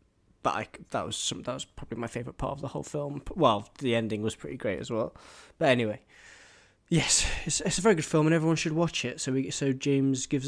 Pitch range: 110-140 Hz